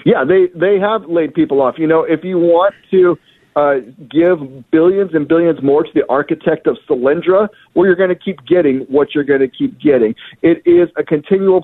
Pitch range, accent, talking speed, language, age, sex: 135-180 Hz, American, 205 wpm, English, 40-59, male